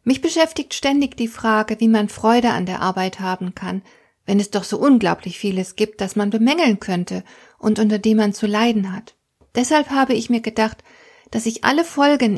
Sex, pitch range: female, 195-245 Hz